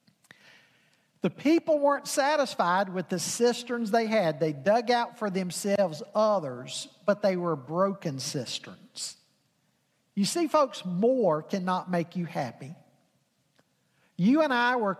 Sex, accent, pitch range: male, American, 170-240 Hz